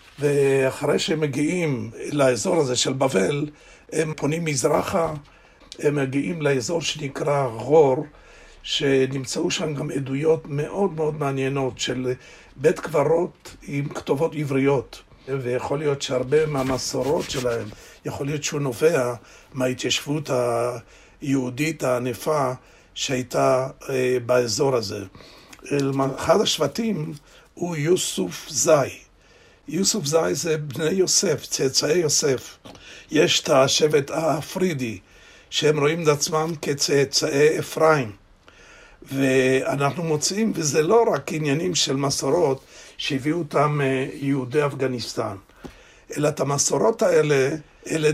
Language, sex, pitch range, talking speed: Hebrew, male, 130-155 Hz, 100 wpm